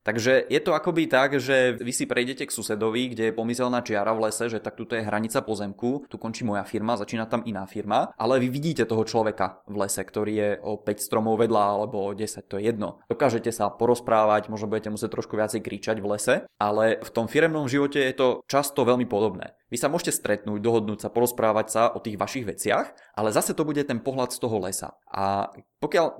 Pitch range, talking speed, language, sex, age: 105-130 Hz, 215 wpm, Czech, male, 20-39